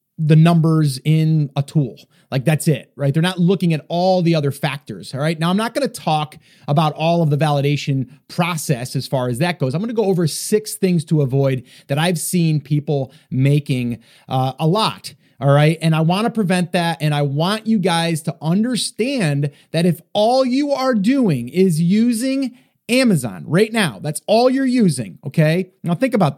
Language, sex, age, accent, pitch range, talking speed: English, male, 30-49, American, 150-210 Hz, 190 wpm